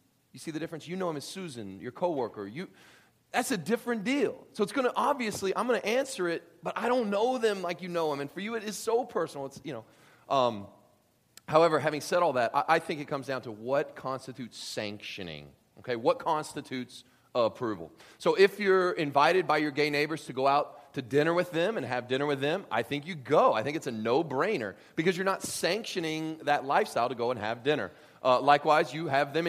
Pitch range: 130-180 Hz